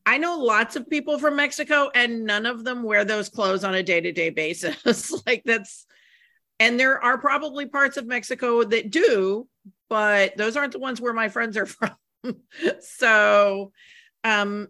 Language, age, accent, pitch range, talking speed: English, 40-59, American, 190-245 Hz, 165 wpm